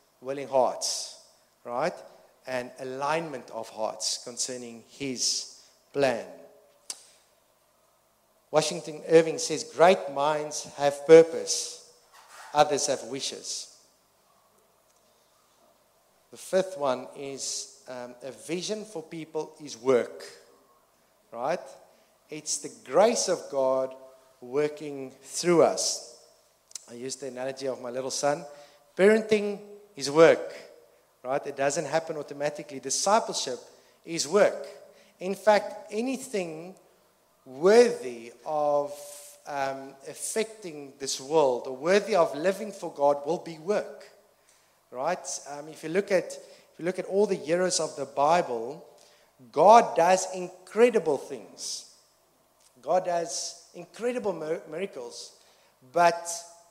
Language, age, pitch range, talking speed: English, 50-69, 140-200 Hz, 110 wpm